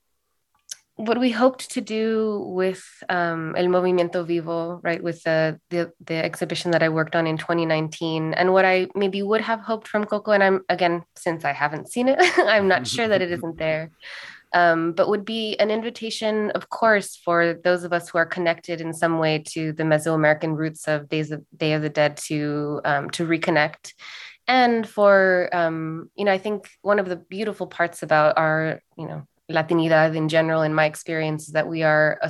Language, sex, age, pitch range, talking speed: English, female, 20-39, 160-195 Hz, 195 wpm